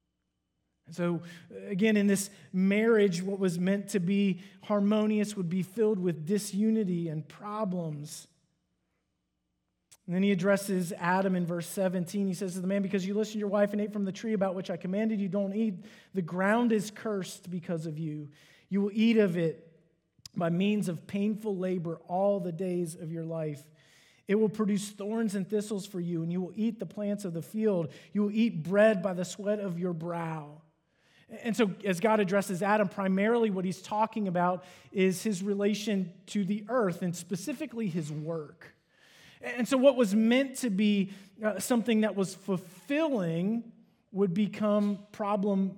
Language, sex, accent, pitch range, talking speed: English, male, American, 180-215 Hz, 175 wpm